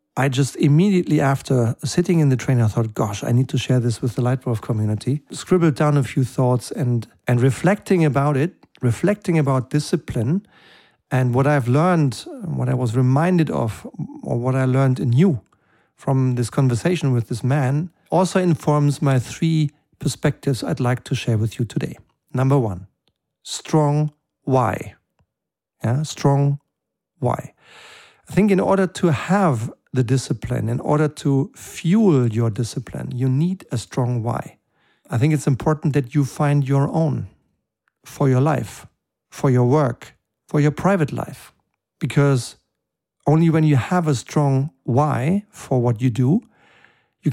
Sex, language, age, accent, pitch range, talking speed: male, German, 50-69, German, 125-155 Hz, 155 wpm